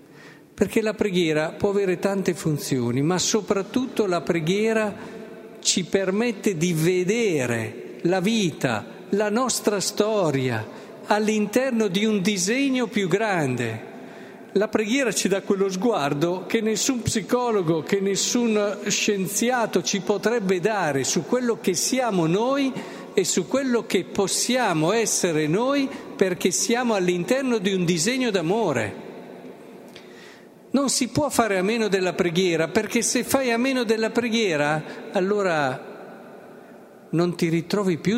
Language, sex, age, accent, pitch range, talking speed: Italian, male, 50-69, native, 160-215 Hz, 125 wpm